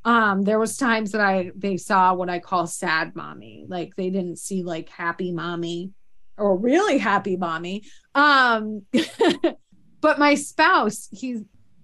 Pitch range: 185-230 Hz